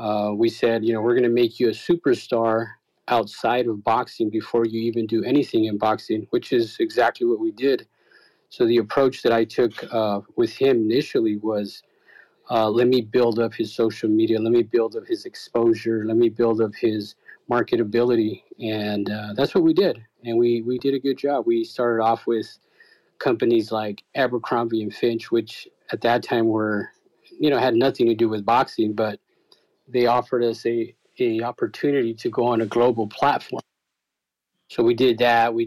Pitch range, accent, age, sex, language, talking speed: 115-140 Hz, American, 40-59, male, English, 190 wpm